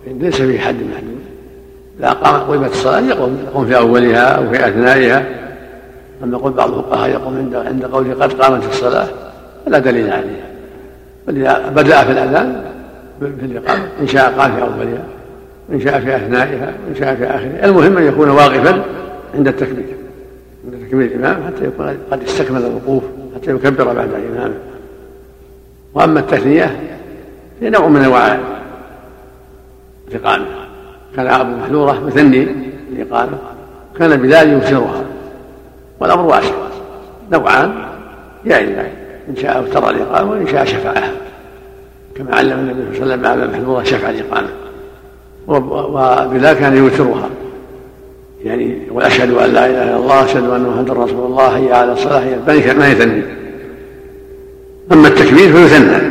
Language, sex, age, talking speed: Arabic, male, 60-79, 135 wpm